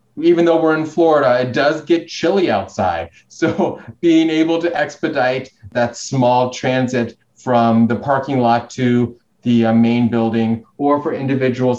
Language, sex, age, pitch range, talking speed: English, male, 30-49, 115-145 Hz, 155 wpm